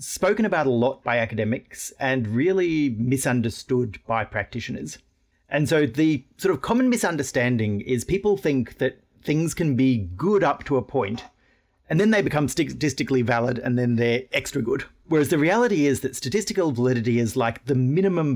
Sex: male